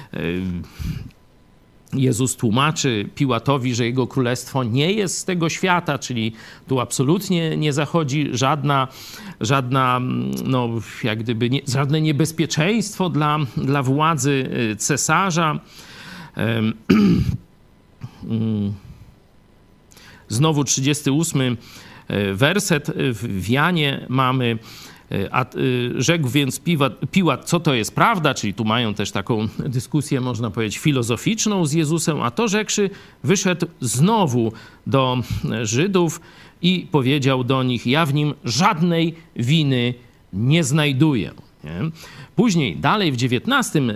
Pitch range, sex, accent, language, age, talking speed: 120-165 Hz, male, native, Polish, 50-69, 95 wpm